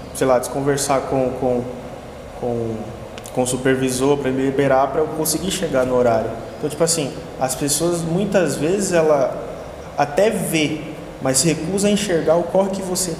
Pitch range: 125-160 Hz